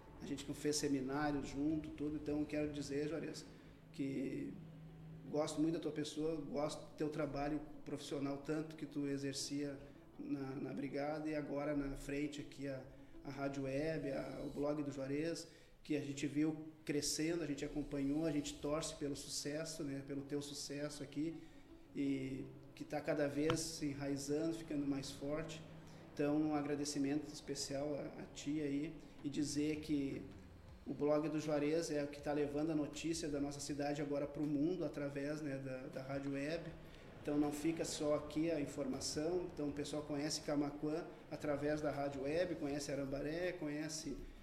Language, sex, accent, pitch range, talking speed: Portuguese, male, Brazilian, 140-155 Hz, 165 wpm